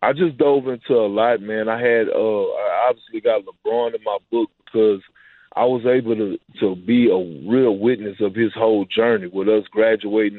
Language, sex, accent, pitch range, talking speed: English, male, American, 105-120 Hz, 195 wpm